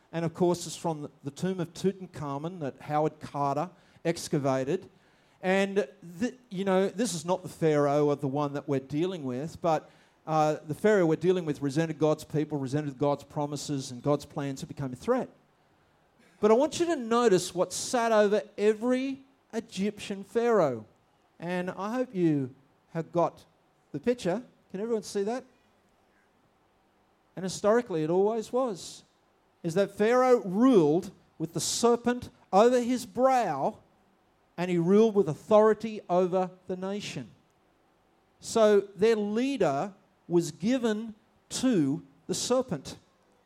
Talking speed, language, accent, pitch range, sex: 140 wpm, English, Australian, 155-225 Hz, male